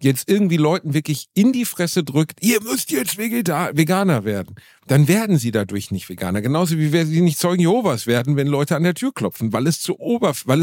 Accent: German